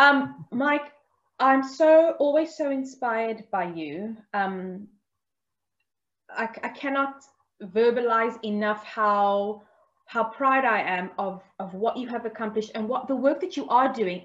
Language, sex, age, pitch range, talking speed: English, female, 20-39, 210-265 Hz, 145 wpm